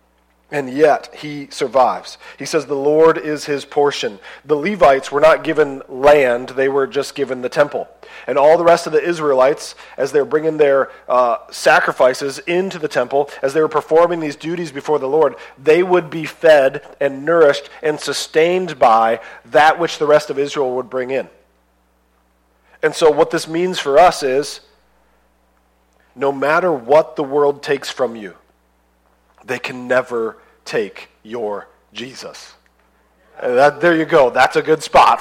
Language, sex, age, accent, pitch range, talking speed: English, male, 40-59, American, 130-165 Hz, 165 wpm